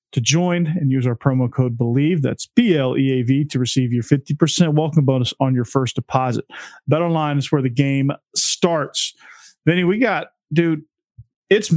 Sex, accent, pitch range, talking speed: male, American, 135-165 Hz, 185 wpm